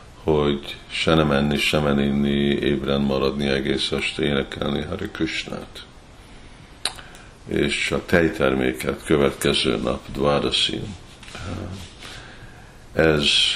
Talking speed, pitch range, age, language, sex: 90 wpm, 70-85 Hz, 50-69, Hungarian, male